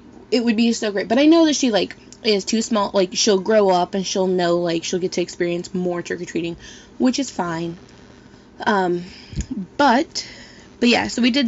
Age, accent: 20-39, American